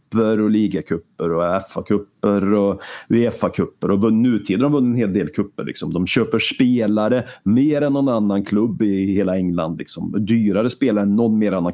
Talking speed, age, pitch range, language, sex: 175 wpm, 30-49, 95-120 Hz, Swedish, male